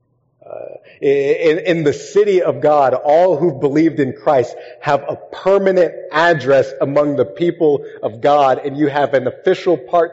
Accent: American